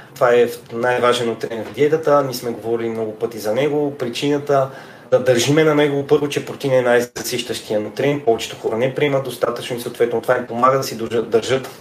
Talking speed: 190 wpm